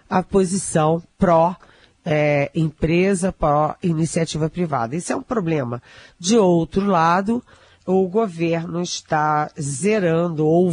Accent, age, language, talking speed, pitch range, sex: Brazilian, 40-59, Portuguese, 100 wpm, 155-190 Hz, female